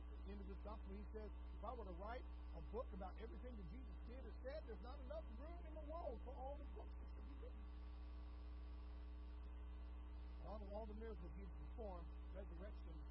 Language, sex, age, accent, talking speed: English, male, 60-79, American, 170 wpm